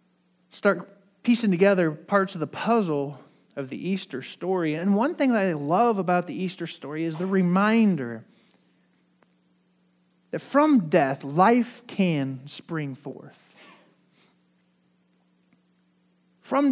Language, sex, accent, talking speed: English, male, American, 115 wpm